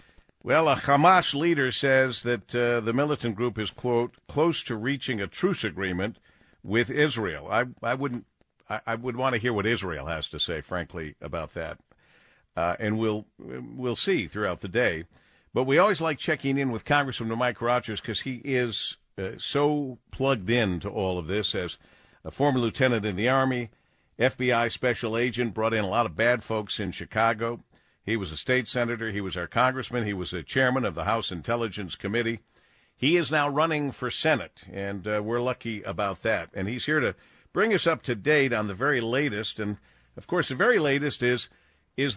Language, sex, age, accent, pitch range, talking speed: English, male, 50-69, American, 105-135 Hz, 195 wpm